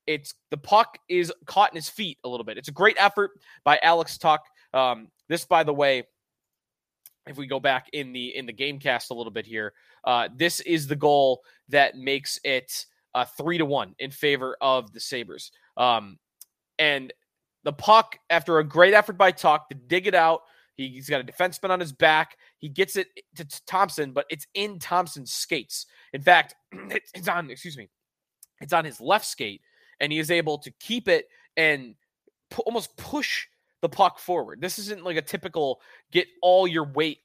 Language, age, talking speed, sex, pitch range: English, 20-39, 190 wpm, male, 145-200 Hz